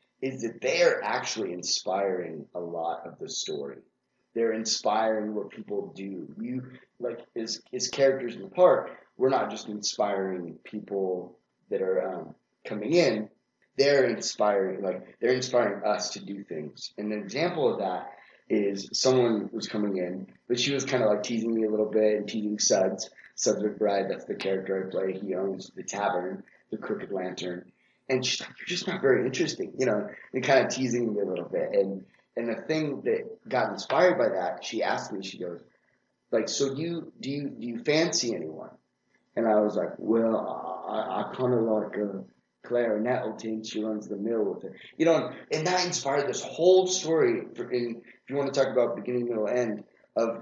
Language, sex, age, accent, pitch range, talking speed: English, male, 30-49, American, 105-140 Hz, 190 wpm